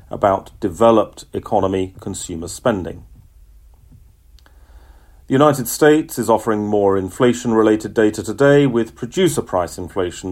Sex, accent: male, British